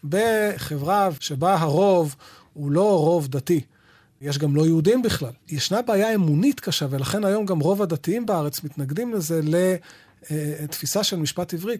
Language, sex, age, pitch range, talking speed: Hebrew, male, 40-59, 150-220 Hz, 140 wpm